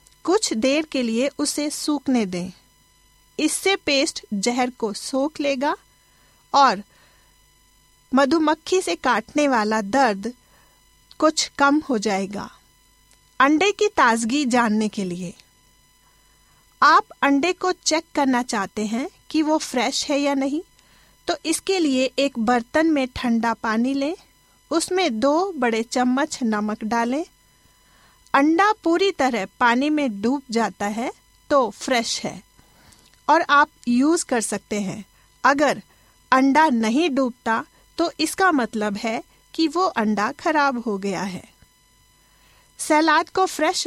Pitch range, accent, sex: 230-305 Hz, native, female